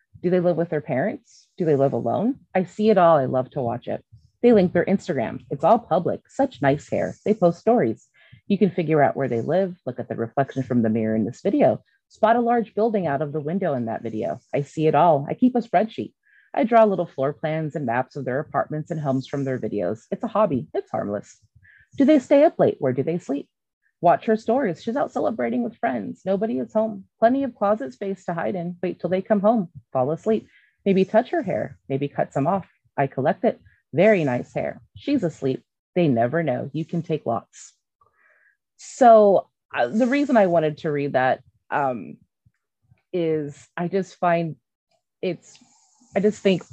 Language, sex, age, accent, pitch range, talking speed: English, female, 30-49, American, 140-210 Hz, 210 wpm